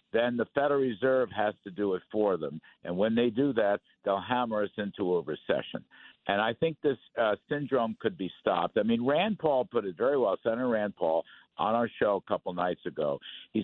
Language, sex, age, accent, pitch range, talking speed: English, male, 60-79, American, 95-130 Hz, 215 wpm